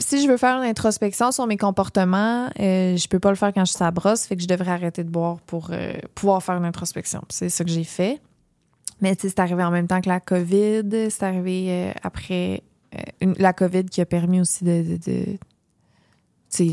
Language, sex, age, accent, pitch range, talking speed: French, female, 20-39, Canadian, 170-195 Hz, 230 wpm